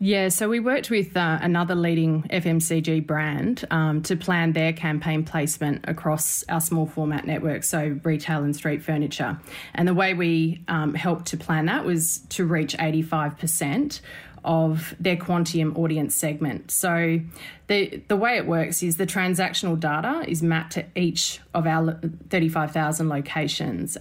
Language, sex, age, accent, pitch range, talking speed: English, female, 20-39, Australian, 155-175 Hz, 155 wpm